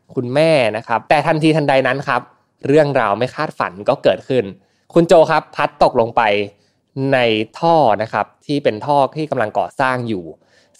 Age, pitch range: 20-39, 110-155 Hz